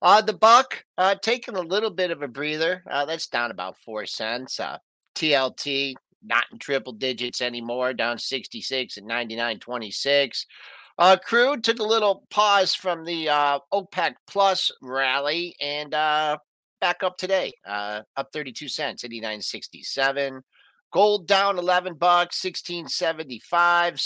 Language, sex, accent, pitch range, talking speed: English, male, American, 135-185 Hz, 135 wpm